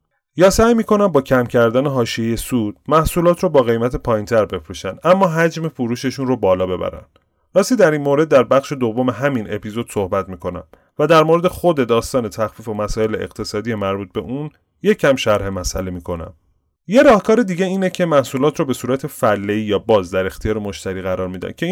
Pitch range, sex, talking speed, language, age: 95-140 Hz, male, 180 wpm, Persian, 30-49